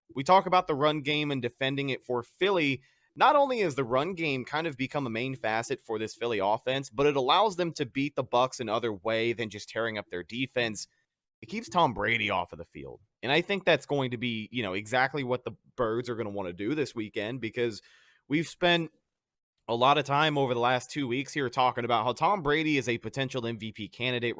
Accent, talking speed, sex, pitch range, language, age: American, 235 wpm, male, 120-150 Hz, English, 30-49